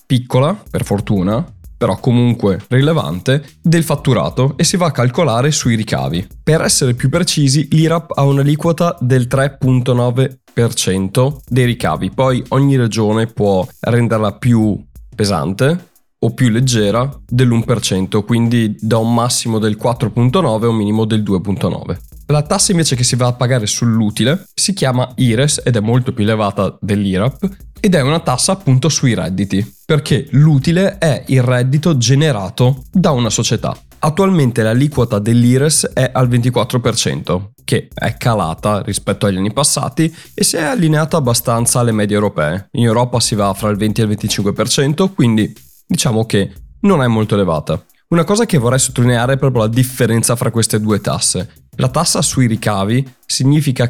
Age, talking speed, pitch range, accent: 20-39, 155 wpm, 110-140 Hz, native